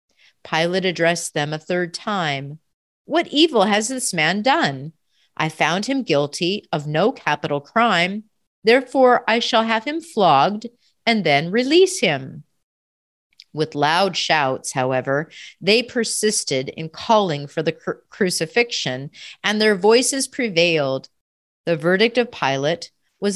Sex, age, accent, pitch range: female, 40-59, American, 155-230 Hz